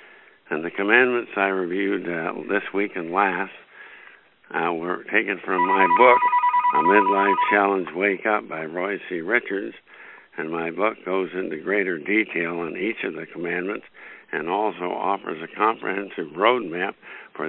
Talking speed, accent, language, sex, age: 150 wpm, American, English, male, 60-79